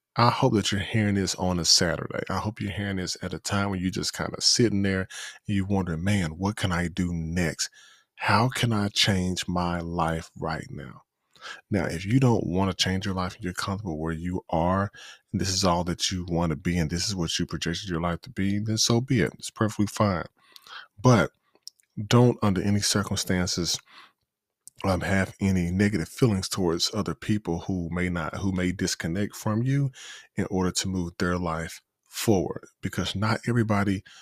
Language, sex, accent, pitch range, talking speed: English, male, American, 85-100 Hz, 195 wpm